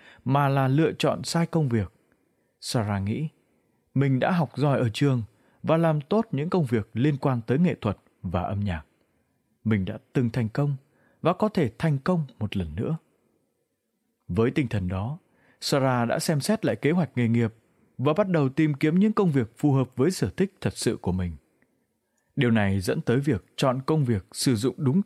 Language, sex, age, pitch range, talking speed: Vietnamese, male, 20-39, 115-155 Hz, 200 wpm